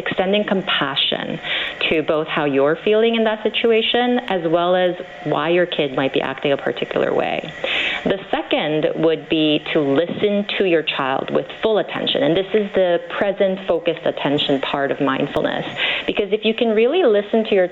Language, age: English, 30-49